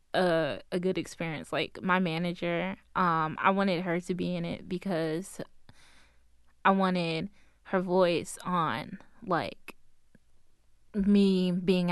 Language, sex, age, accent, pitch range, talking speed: English, female, 20-39, American, 170-190 Hz, 120 wpm